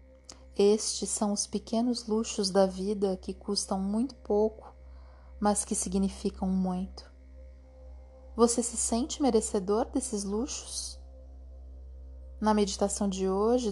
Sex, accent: female, Brazilian